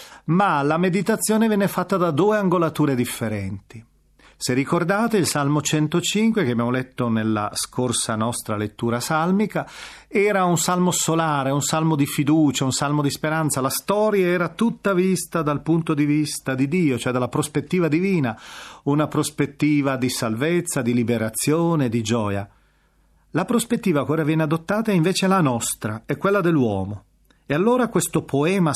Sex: male